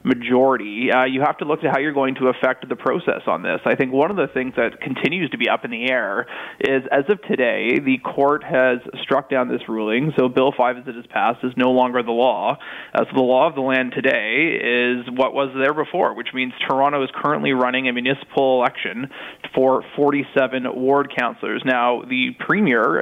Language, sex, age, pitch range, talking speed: English, male, 20-39, 125-140 Hz, 215 wpm